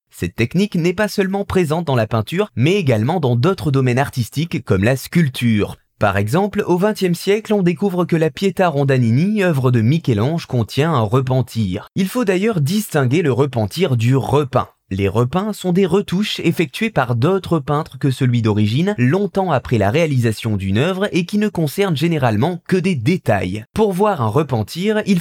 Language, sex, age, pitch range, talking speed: French, male, 20-39, 120-185 Hz, 175 wpm